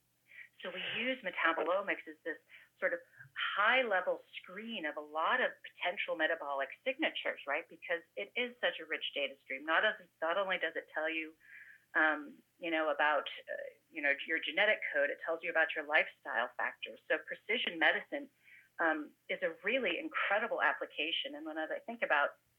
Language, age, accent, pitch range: English, 40-59, American, 160-240 Hz